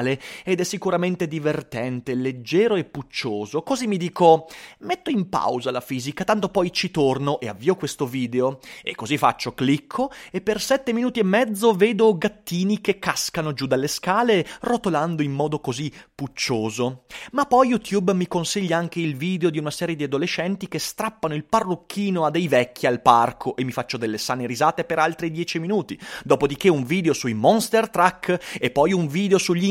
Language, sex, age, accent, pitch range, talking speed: Italian, male, 30-49, native, 140-210 Hz, 180 wpm